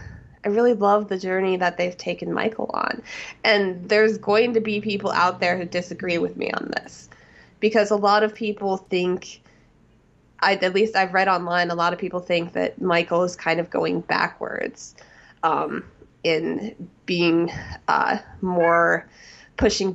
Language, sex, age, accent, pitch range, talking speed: English, female, 20-39, American, 175-220 Hz, 160 wpm